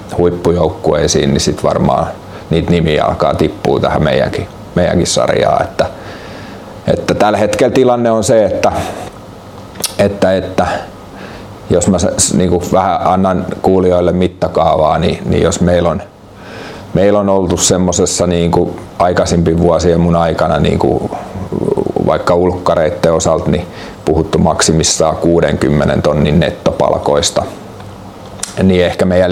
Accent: native